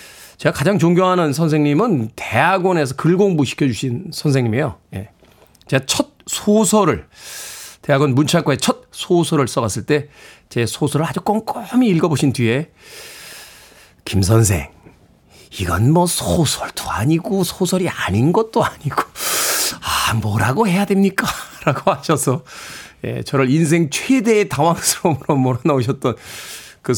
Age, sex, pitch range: 40-59, male, 125-185 Hz